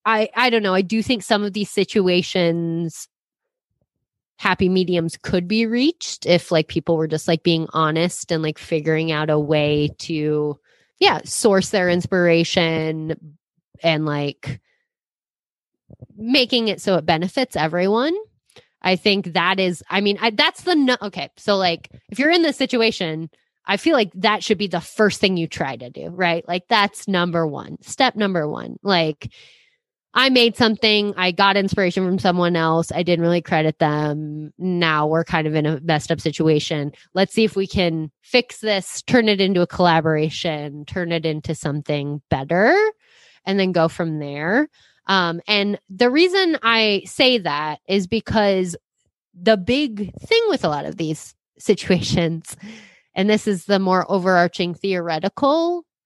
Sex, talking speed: female, 160 wpm